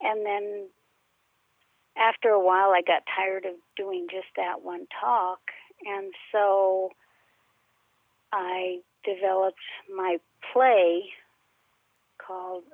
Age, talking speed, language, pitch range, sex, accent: 50-69, 100 wpm, English, 185-210 Hz, female, American